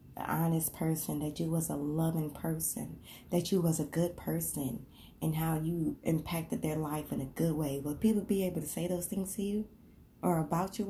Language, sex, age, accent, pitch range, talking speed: English, female, 20-39, American, 160-205 Hz, 210 wpm